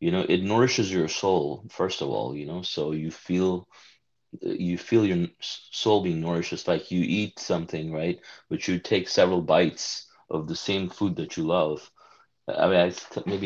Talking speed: 190 wpm